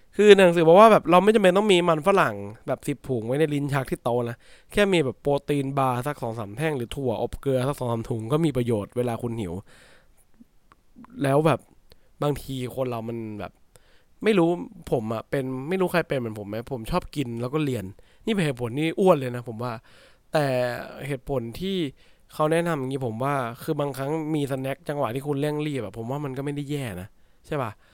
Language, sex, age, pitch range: English, male, 20-39, 115-150 Hz